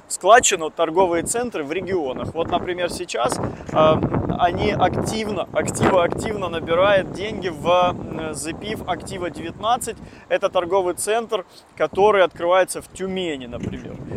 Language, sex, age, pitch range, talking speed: Russian, male, 20-39, 170-205 Hz, 115 wpm